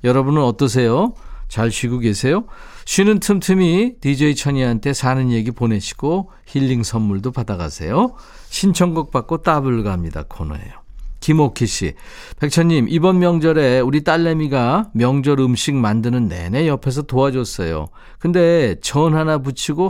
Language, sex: Korean, male